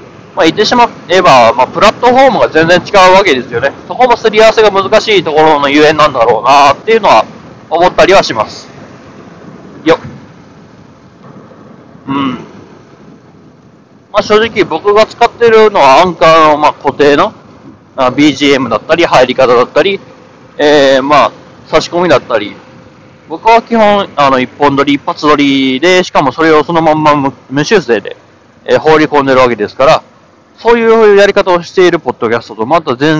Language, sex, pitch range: Japanese, male, 130-195 Hz